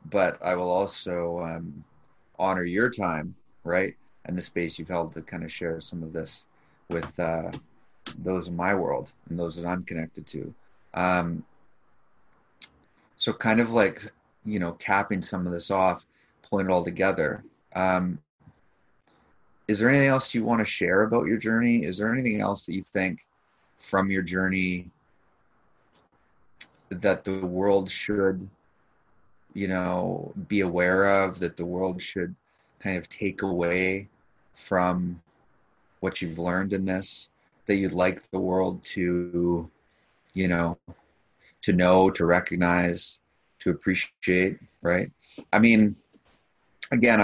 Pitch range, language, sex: 85-95 Hz, English, male